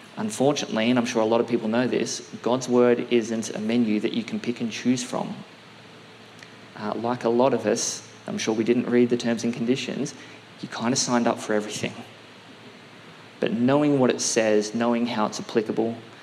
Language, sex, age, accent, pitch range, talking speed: English, male, 20-39, Australian, 110-125 Hz, 195 wpm